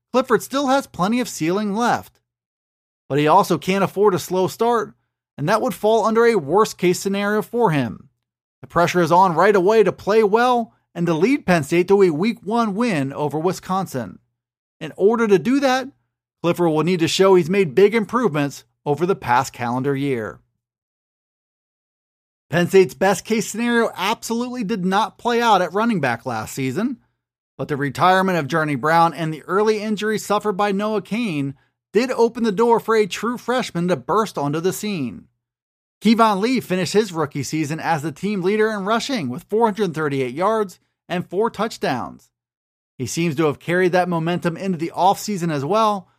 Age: 30-49